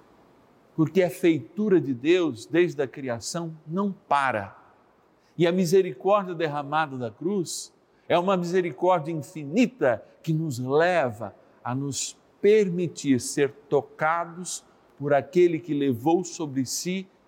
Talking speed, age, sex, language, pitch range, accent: 120 wpm, 50-69, male, Portuguese, 135-190 Hz, Brazilian